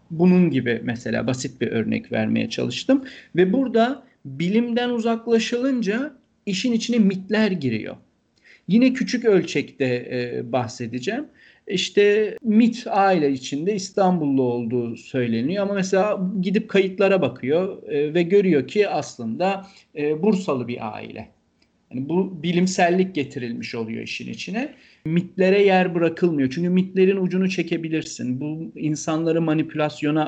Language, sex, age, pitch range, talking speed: Turkish, male, 40-59, 135-190 Hz, 110 wpm